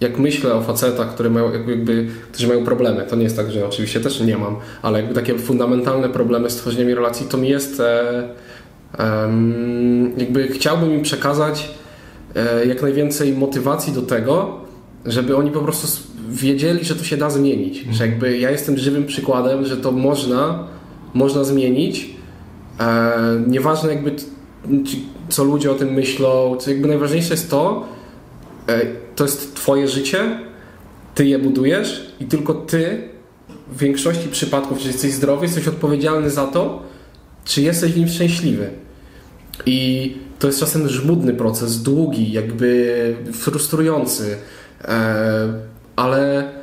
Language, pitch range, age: Polish, 120-145 Hz, 20-39